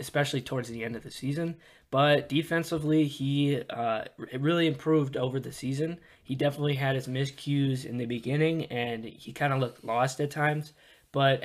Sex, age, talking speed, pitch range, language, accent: male, 20-39, 175 wpm, 125-145 Hz, English, American